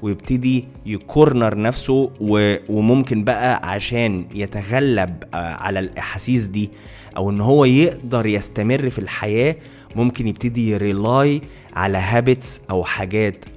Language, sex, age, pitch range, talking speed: Arabic, male, 20-39, 100-125 Hz, 110 wpm